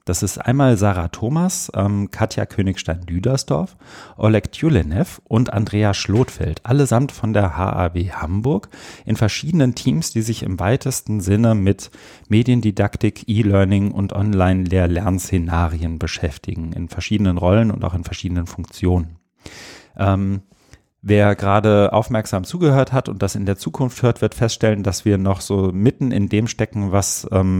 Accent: German